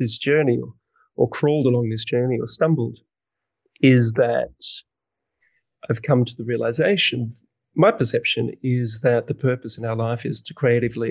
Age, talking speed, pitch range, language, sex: 30-49, 155 wpm, 115-135 Hz, English, male